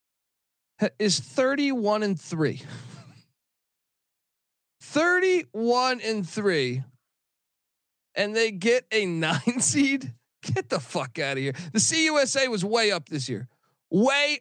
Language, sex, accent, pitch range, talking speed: English, male, American, 150-215 Hz, 110 wpm